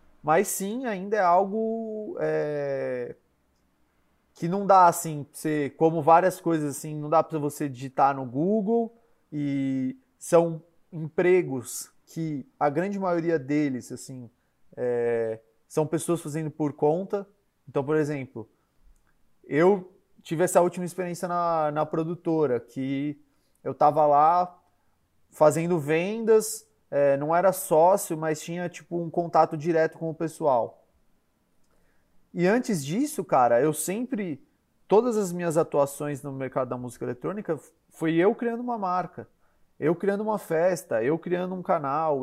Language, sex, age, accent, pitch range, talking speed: Portuguese, male, 20-39, Brazilian, 140-185 Hz, 130 wpm